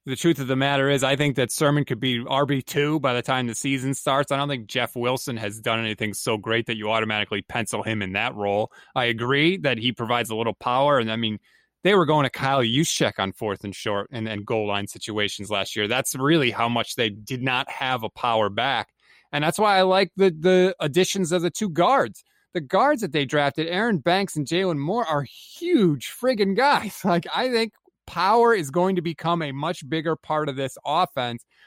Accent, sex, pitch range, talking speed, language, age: American, male, 120-180 Hz, 220 wpm, English, 30-49